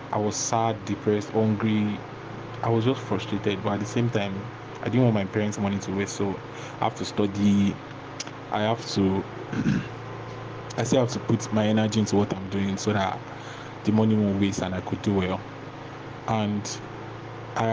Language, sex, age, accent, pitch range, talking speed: English, male, 20-39, Nigerian, 100-120 Hz, 185 wpm